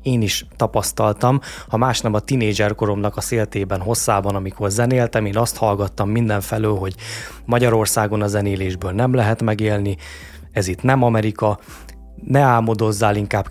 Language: Hungarian